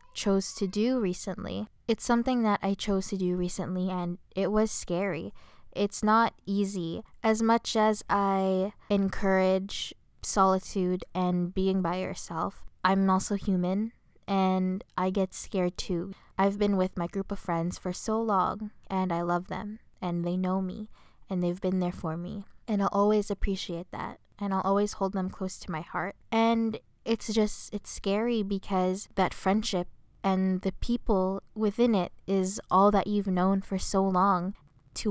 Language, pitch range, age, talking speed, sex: English, 185-210 Hz, 10-29, 165 wpm, female